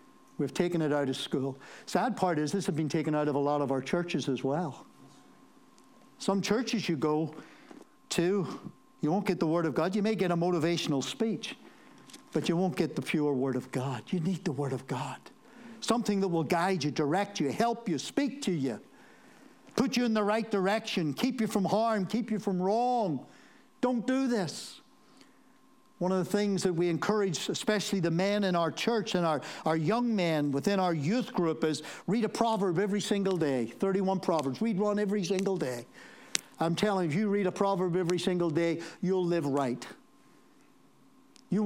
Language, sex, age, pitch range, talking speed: English, male, 60-79, 155-210 Hz, 195 wpm